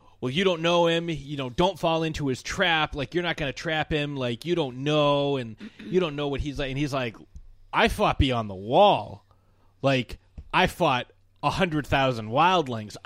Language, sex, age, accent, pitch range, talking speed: English, male, 30-49, American, 105-170 Hz, 200 wpm